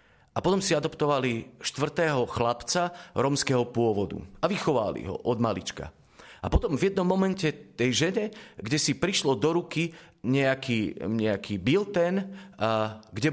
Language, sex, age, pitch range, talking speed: Slovak, male, 40-59, 125-170 Hz, 130 wpm